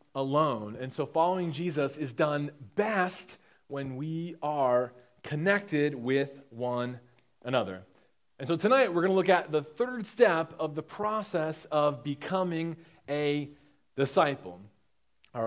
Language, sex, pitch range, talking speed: English, male, 145-185 Hz, 130 wpm